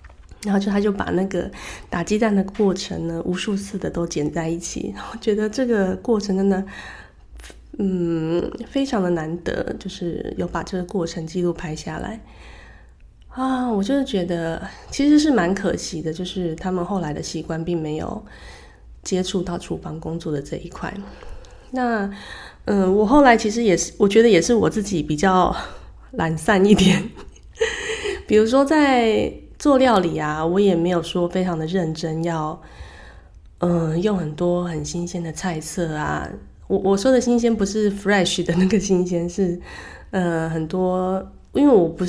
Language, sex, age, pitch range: Chinese, female, 20-39, 160-200 Hz